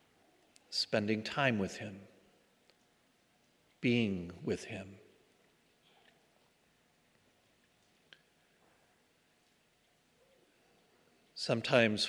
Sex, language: male, English